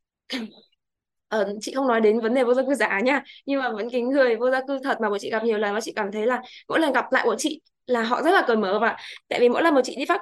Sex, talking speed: female, 310 wpm